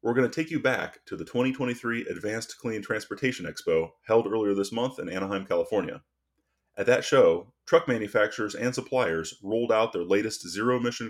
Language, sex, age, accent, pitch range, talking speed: English, male, 30-49, American, 95-130 Hz, 175 wpm